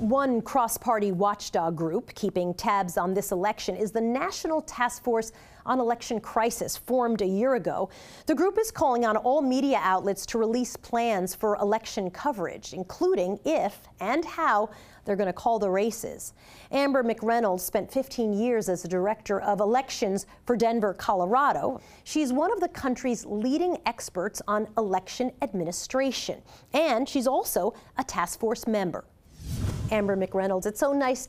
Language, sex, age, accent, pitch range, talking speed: English, female, 40-59, American, 205-270 Hz, 150 wpm